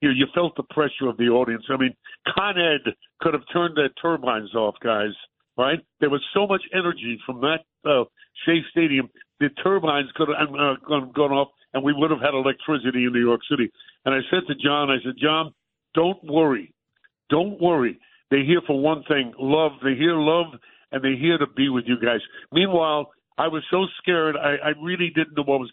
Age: 50-69